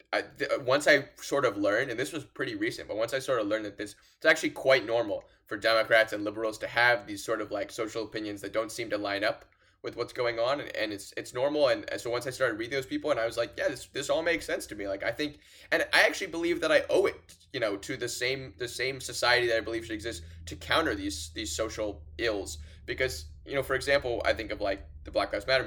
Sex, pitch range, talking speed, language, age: male, 100-130 Hz, 270 wpm, English, 20-39